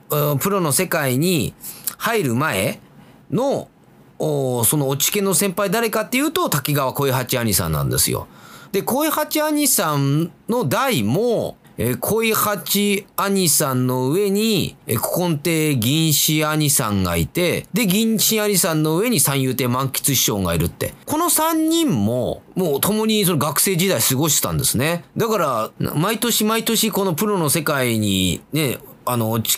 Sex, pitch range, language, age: male, 130-205 Hz, Japanese, 30-49